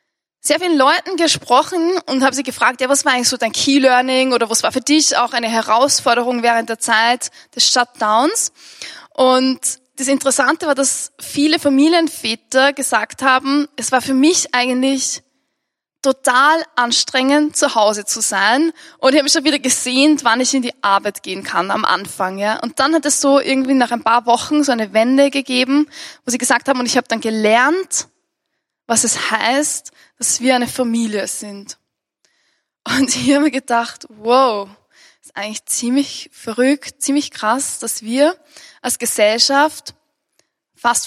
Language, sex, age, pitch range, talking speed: German, female, 10-29, 230-280 Hz, 165 wpm